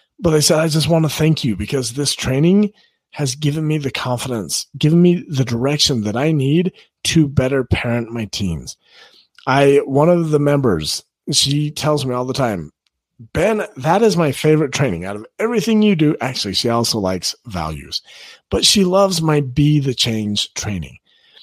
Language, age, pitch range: English, 40-59, 120-165 Hz